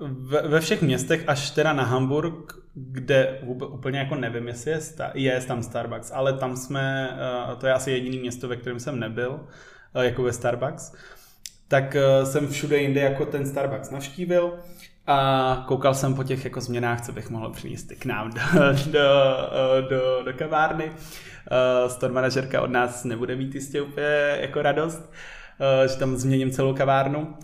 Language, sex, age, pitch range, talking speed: Czech, male, 20-39, 125-140 Hz, 155 wpm